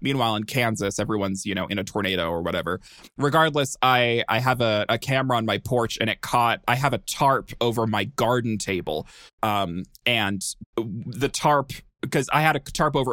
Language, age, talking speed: English, 20-39, 190 wpm